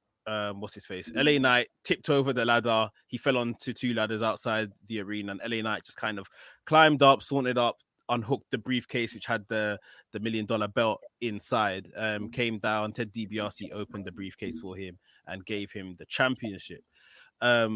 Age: 20-39